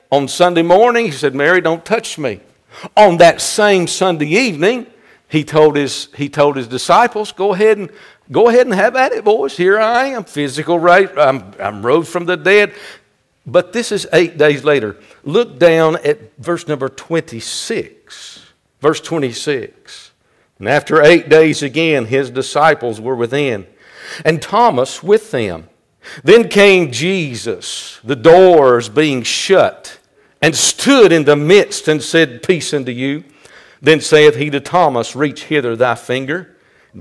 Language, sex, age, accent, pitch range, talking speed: English, male, 60-79, American, 140-190 Hz, 150 wpm